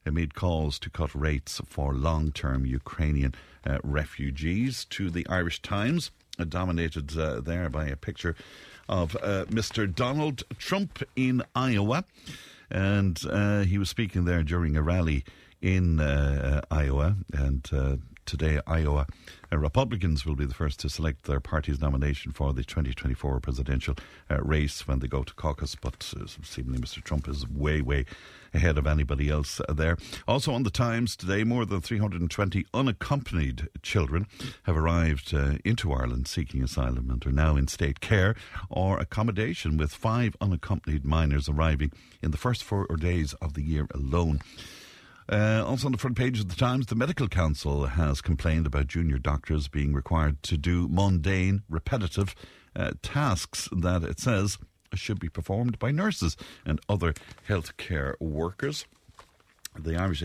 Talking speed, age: 160 wpm, 60-79